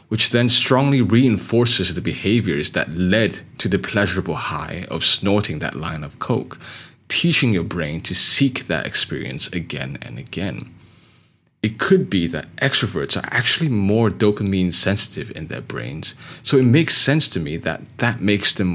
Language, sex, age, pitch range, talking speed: English, male, 30-49, 90-125 Hz, 165 wpm